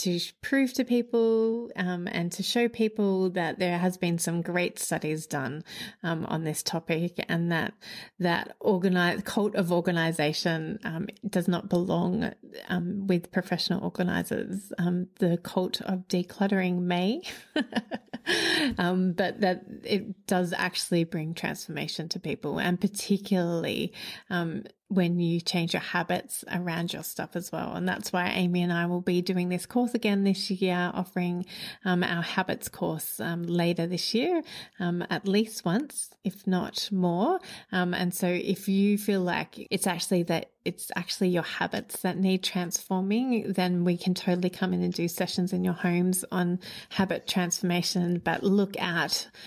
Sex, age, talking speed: female, 30-49, 160 wpm